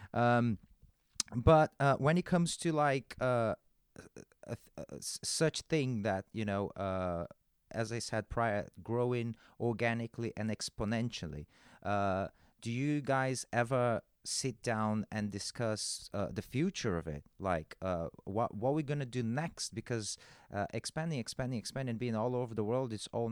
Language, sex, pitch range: English, male, 100-125 Hz